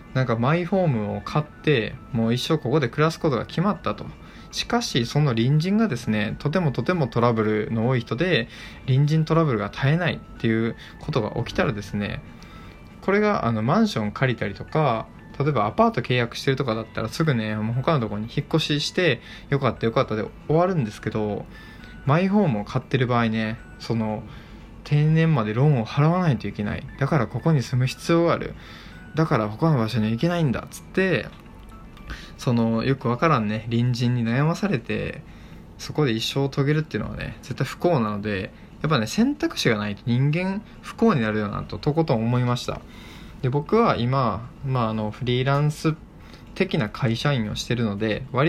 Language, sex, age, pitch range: Japanese, male, 20-39, 110-155 Hz